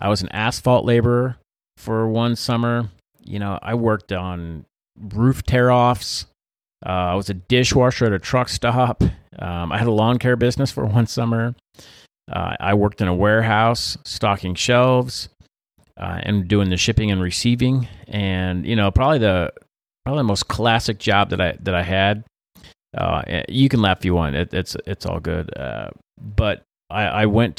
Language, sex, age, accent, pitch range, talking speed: English, male, 30-49, American, 90-115 Hz, 175 wpm